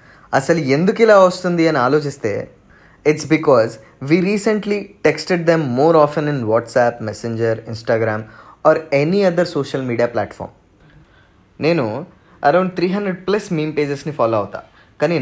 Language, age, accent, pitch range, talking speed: Telugu, 20-39, native, 120-170 Hz, 135 wpm